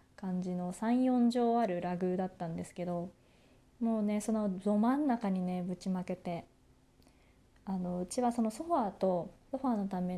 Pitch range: 185-245 Hz